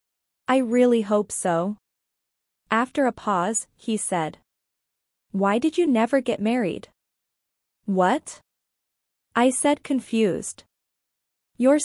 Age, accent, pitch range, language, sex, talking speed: 20-39, American, 200-245 Hz, English, female, 100 wpm